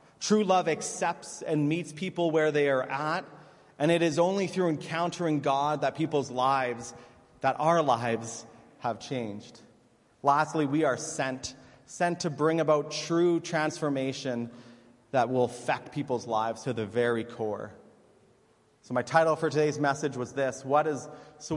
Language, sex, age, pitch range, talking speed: English, male, 30-49, 125-155 Hz, 145 wpm